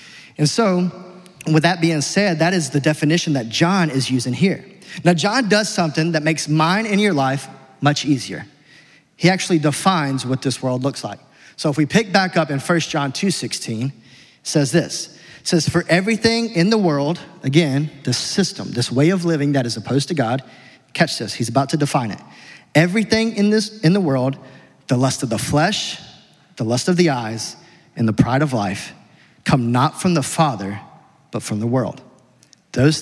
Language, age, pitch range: English, 30-49, 130-175 Hz